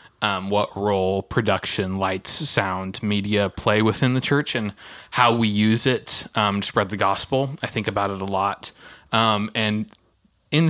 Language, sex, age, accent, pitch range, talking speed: English, male, 20-39, American, 100-115 Hz, 170 wpm